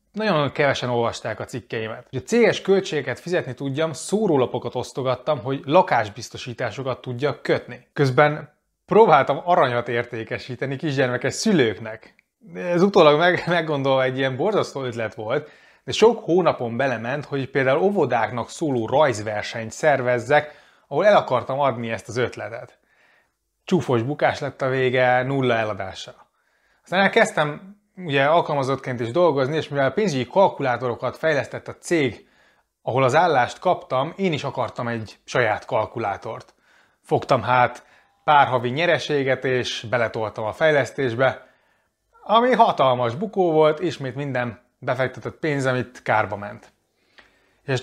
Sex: male